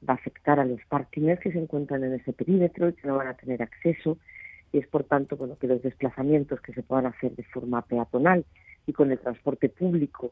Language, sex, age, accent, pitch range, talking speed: Spanish, female, 40-59, Spanish, 130-155 Hz, 225 wpm